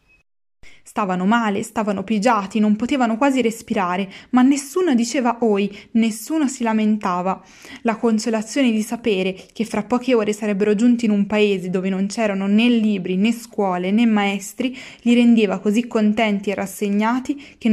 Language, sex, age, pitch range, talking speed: Italian, female, 20-39, 205-235 Hz, 150 wpm